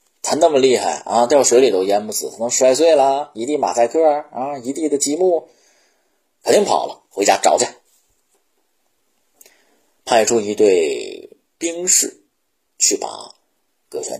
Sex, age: male, 30-49